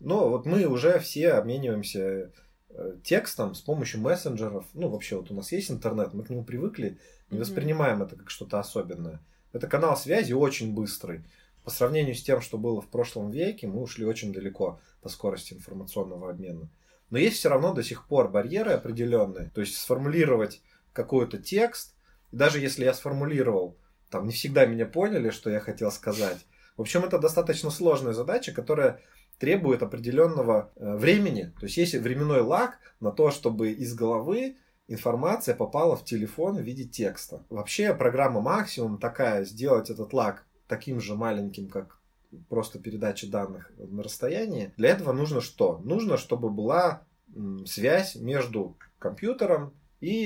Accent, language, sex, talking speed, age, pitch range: native, Russian, male, 155 wpm, 20-39, 105-150 Hz